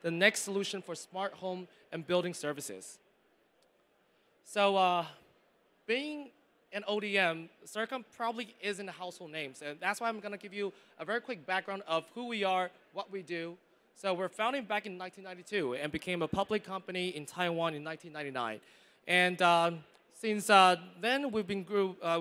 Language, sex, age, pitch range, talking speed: English, male, 20-39, 160-200 Hz, 155 wpm